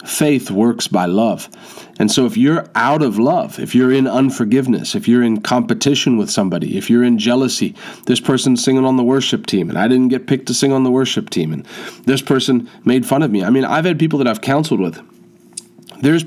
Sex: male